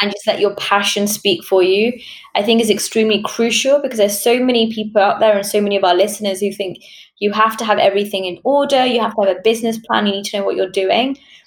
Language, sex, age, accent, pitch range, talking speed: English, female, 10-29, British, 190-225 Hz, 255 wpm